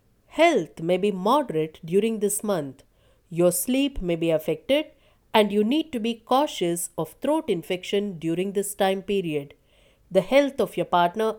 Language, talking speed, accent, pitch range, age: English, 160 wpm, Indian, 170-250 Hz, 50-69